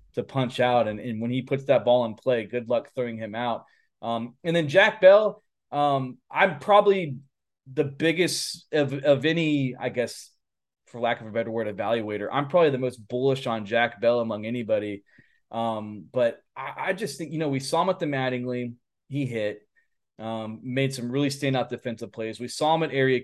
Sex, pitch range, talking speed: male, 120-150 Hz, 200 wpm